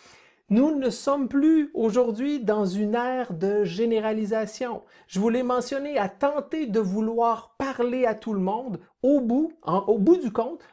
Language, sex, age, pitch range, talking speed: French, male, 50-69, 195-245 Hz, 150 wpm